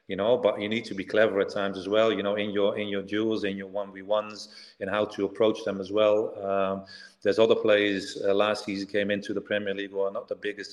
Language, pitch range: English, 100-115 Hz